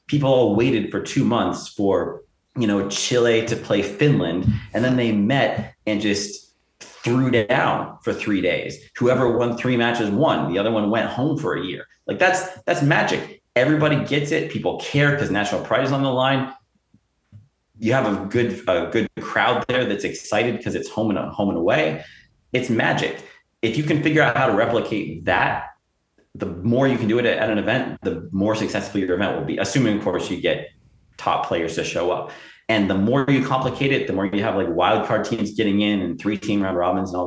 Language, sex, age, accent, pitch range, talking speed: English, male, 30-49, American, 100-130 Hz, 205 wpm